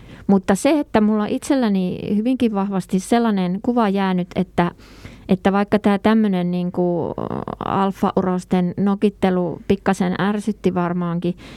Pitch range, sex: 170-195 Hz, female